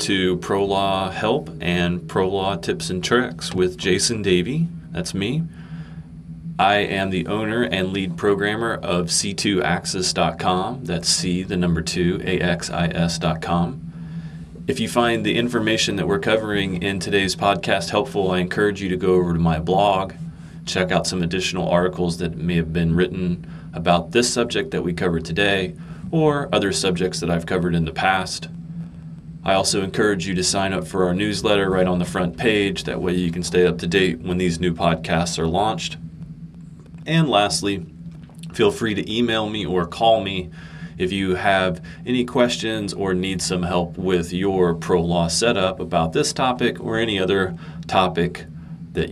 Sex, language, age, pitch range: male, English, 30-49, 85-120 Hz